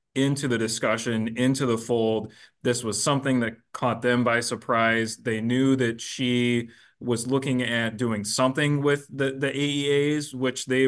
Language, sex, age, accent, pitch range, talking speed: English, male, 30-49, American, 110-130 Hz, 160 wpm